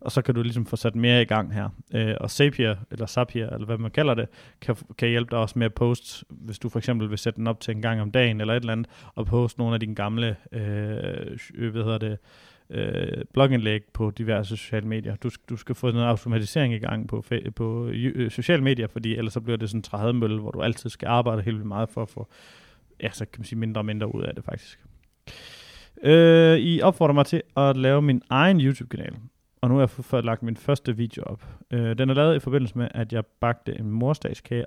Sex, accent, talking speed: male, native, 240 wpm